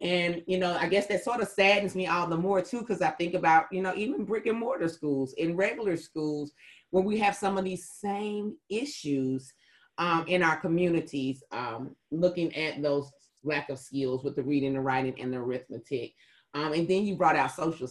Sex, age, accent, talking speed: female, 30-49, American, 210 wpm